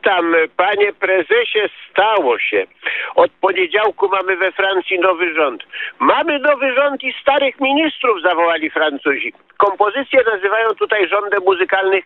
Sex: male